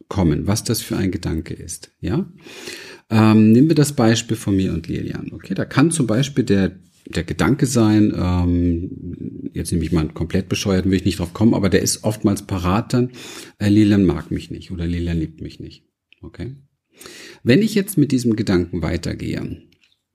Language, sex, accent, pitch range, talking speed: German, male, German, 90-115 Hz, 190 wpm